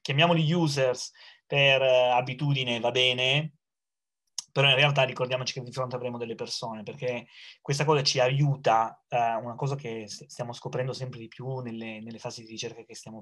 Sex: male